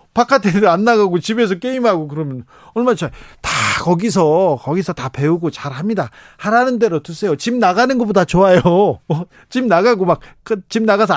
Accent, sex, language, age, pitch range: native, male, Korean, 40-59, 135-195 Hz